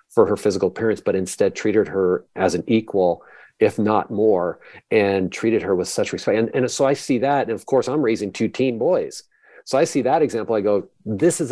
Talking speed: 225 wpm